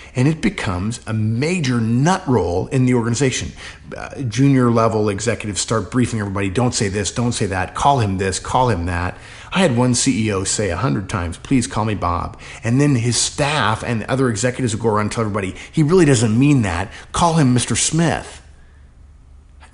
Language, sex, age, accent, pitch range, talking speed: English, male, 50-69, American, 100-135 Hz, 195 wpm